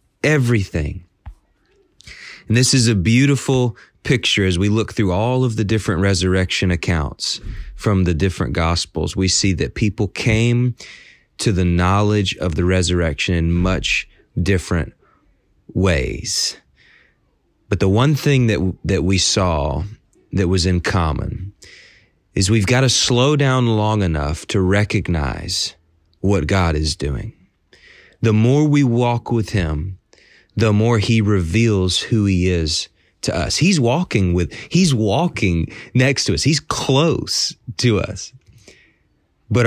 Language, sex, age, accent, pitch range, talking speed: English, male, 30-49, American, 90-115 Hz, 135 wpm